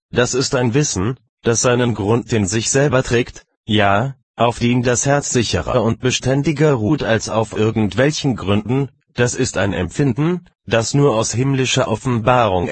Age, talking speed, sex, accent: 30-49, 155 wpm, male, German